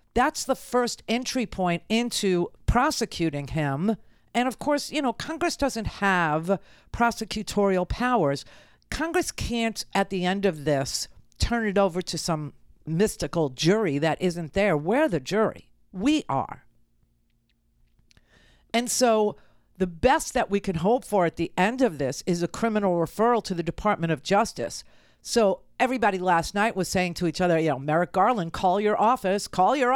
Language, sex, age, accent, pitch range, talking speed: English, female, 50-69, American, 165-235 Hz, 160 wpm